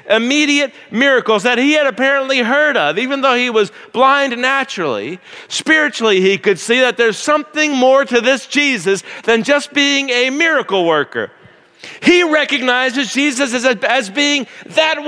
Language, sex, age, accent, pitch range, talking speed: English, male, 50-69, American, 230-290 Hz, 150 wpm